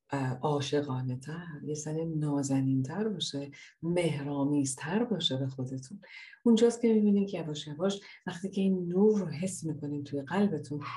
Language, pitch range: Persian, 145-200 Hz